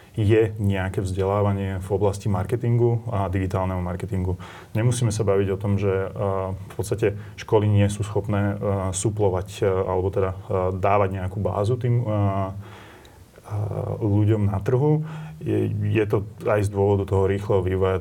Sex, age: male, 30-49